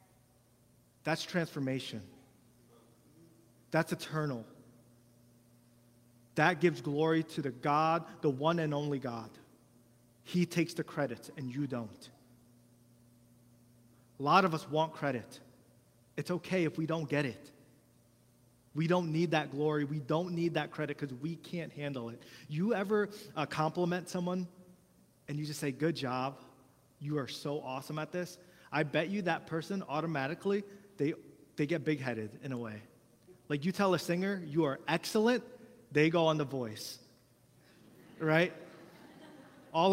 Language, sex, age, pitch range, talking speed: English, male, 30-49, 125-170 Hz, 145 wpm